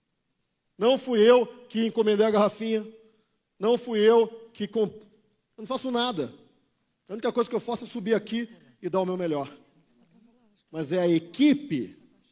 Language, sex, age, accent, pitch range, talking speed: Portuguese, male, 40-59, Brazilian, 170-235 Hz, 160 wpm